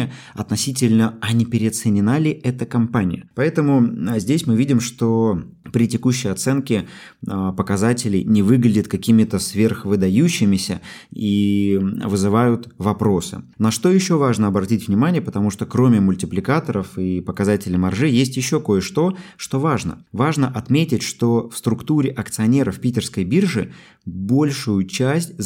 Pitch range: 100-125 Hz